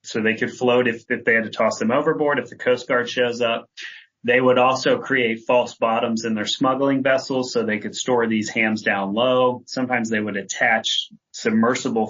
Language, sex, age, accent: English, male, 30-49, American